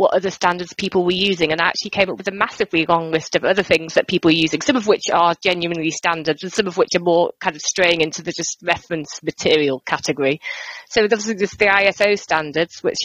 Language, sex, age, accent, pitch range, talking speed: English, female, 30-49, British, 170-190 Hz, 230 wpm